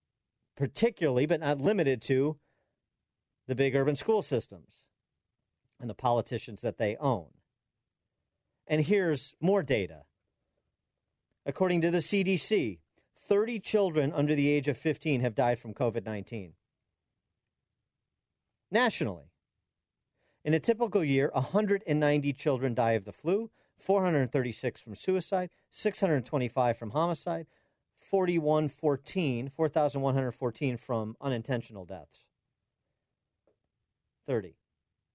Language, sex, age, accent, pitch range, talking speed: English, male, 40-59, American, 115-160 Hz, 100 wpm